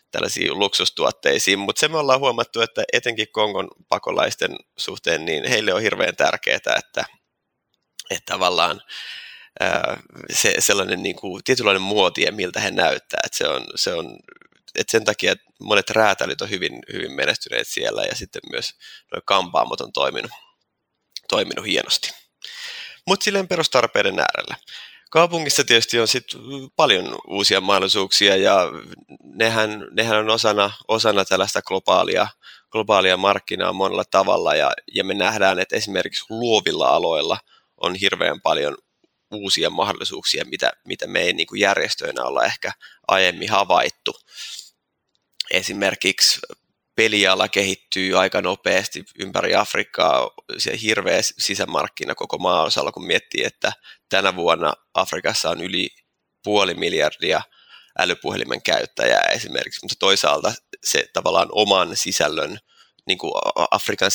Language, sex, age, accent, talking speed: Finnish, male, 20-39, native, 125 wpm